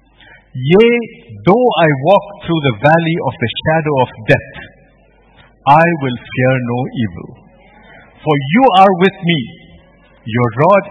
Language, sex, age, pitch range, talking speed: English, male, 50-69, 130-195 Hz, 130 wpm